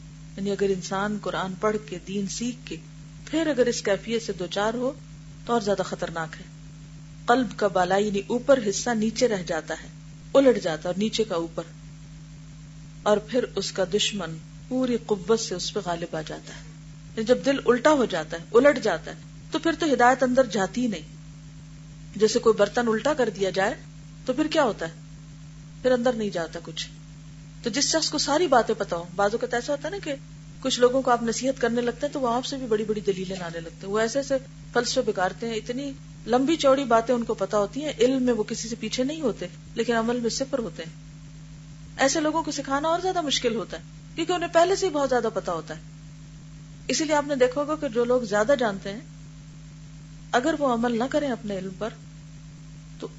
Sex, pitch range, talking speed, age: female, 155-245 Hz, 210 wpm, 40-59